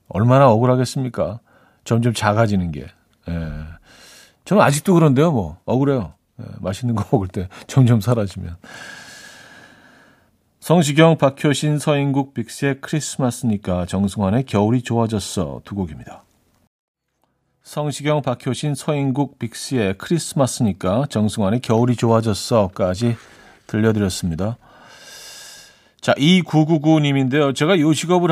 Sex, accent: male, native